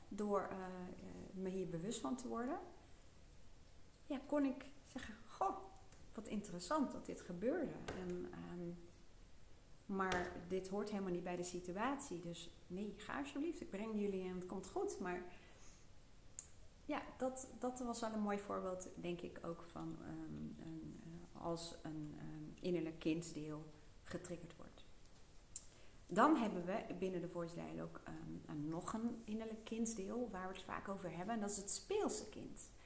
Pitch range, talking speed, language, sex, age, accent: 170-220 Hz, 155 wpm, Dutch, female, 30-49, Dutch